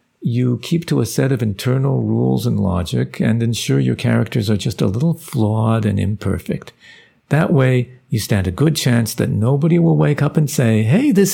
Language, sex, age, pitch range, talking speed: English, male, 50-69, 105-145 Hz, 195 wpm